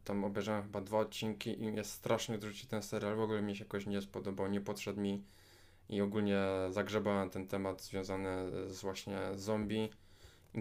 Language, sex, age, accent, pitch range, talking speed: Polish, male, 20-39, native, 95-105 Hz, 170 wpm